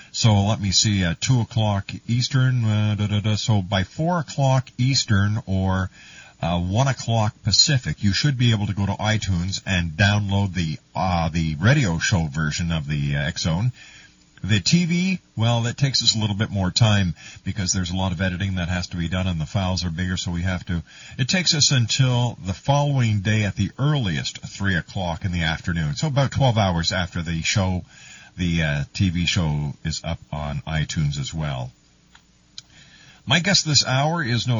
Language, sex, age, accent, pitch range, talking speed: English, male, 50-69, American, 95-130 Hz, 195 wpm